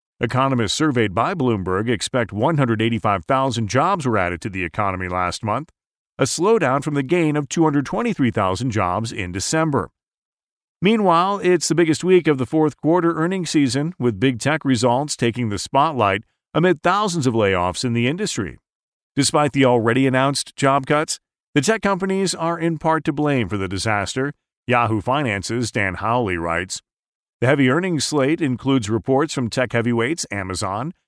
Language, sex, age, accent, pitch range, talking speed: English, male, 40-59, American, 115-155 Hz, 155 wpm